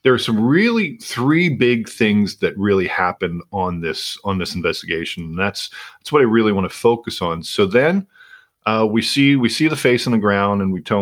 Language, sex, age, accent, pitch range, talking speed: English, male, 40-59, American, 100-125 Hz, 220 wpm